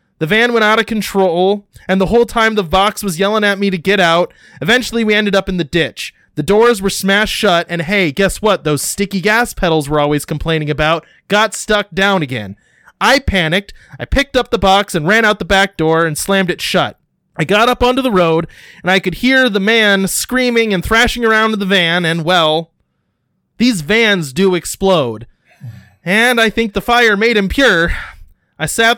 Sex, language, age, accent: male, English, 20-39, American